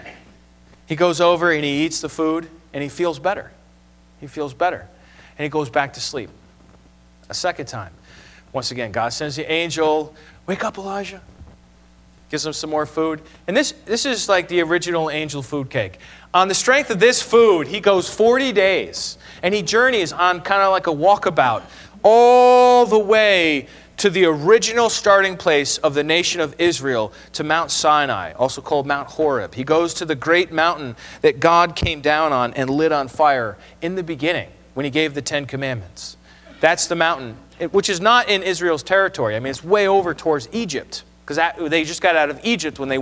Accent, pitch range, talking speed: American, 140-195 Hz, 190 wpm